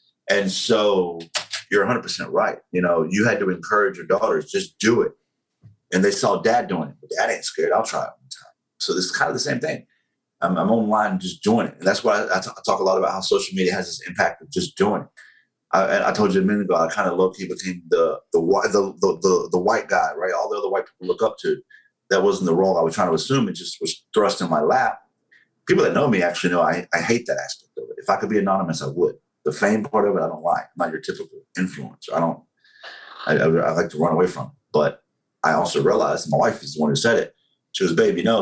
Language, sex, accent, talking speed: English, male, American, 275 wpm